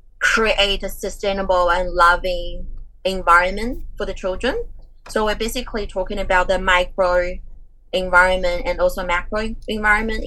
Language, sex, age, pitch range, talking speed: English, female, 20-39, 175-200 Hz, 125 wpm